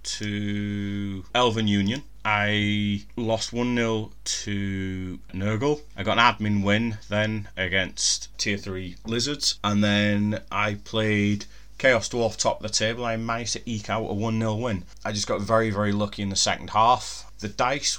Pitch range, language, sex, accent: 100-115 Hz, English, male, British